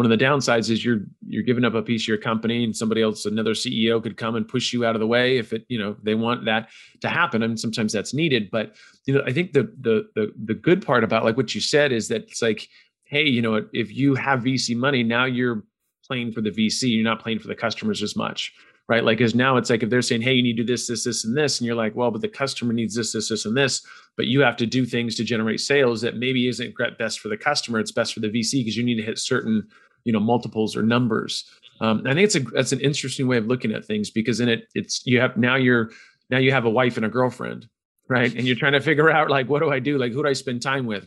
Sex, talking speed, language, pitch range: male, 290 wpm, English, 110-130 Hz